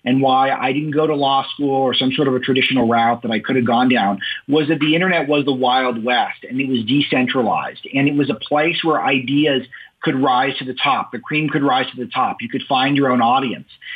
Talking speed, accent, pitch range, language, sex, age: 250 wpm, American, 135-165 Hz, English, male, 40-59